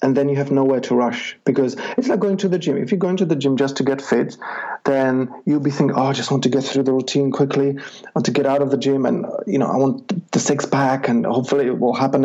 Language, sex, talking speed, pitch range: English, male, 290 wpm, 130-170 Hz